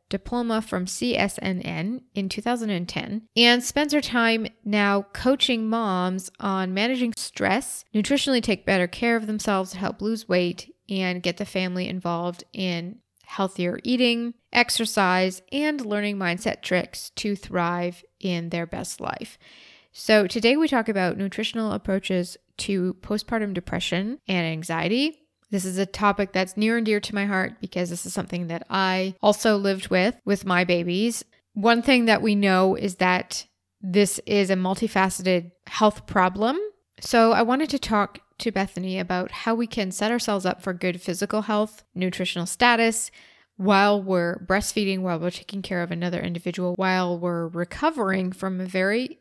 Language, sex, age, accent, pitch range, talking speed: English, female, 20-39, American, 180-225 Hz, 155 wpm